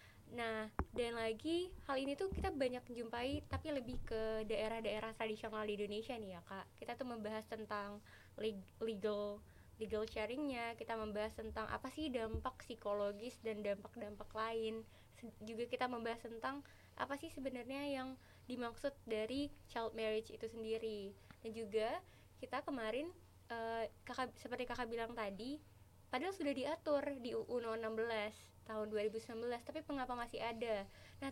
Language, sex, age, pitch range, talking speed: Indonesian, female, 20-39, 220-265 Hz, 145 wpm